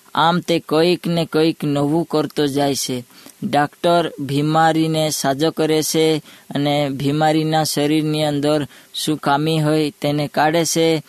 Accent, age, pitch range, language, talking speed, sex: Indian, 20-39, 145-160 Hz, English, 125 wpm, female